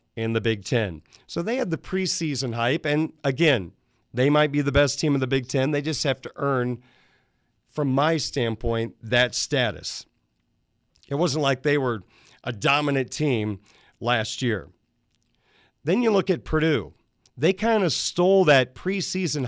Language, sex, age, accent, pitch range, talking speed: English, male, 40-59, American, 120-150 Hz, 165 wpm